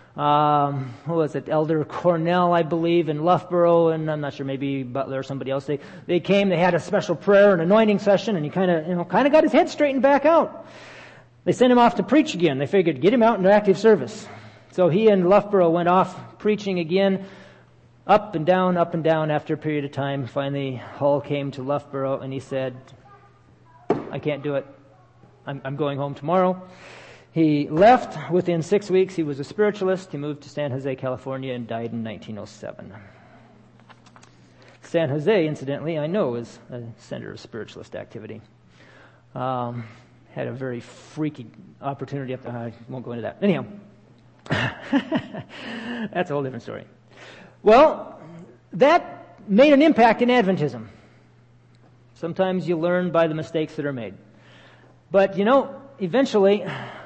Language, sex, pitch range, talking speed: English, male, 135-195 Hz, 170 wpm